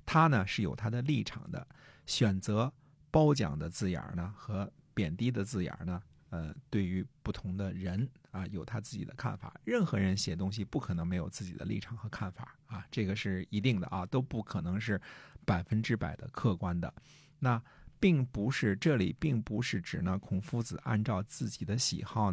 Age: 50-69